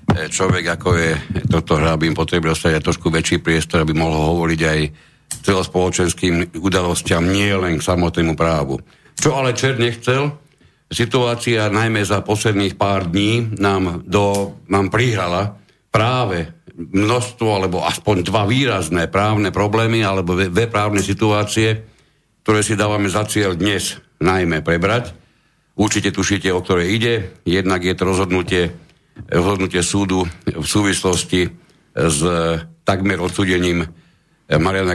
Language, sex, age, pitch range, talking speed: Slovak, male, 60-79, 85-105 Hz, 125 wpm